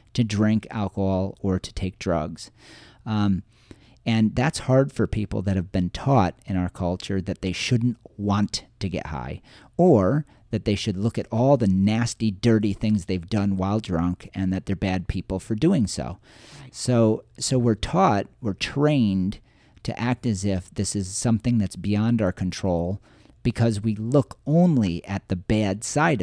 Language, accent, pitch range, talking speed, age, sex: English, American, 90-115 Hz, 170 wpm, 40-59, male